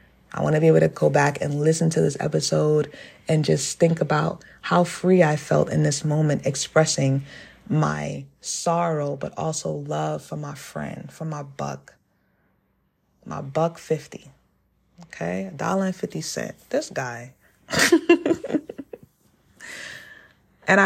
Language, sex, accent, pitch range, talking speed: English, female, American, 140-185 Hz, 140 wpm